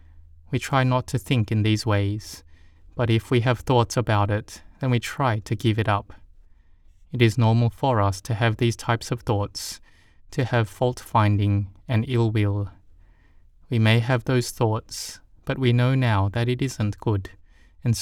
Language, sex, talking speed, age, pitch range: English, male, 175 wpm, 20-39, 95-120 Hz